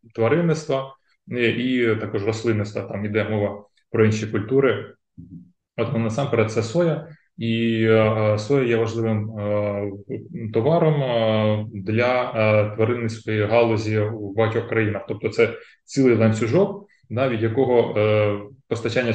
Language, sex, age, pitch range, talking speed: Ukrainian, male, 20-39, 105-120 Hz, 105 wpm